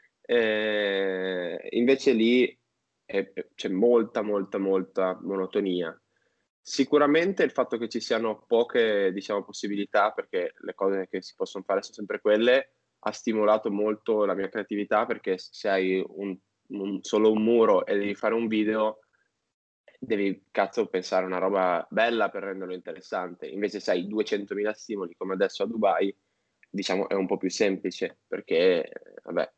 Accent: native